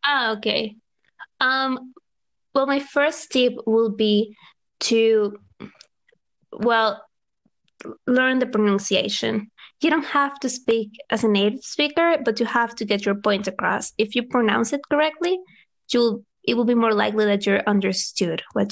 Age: 20-39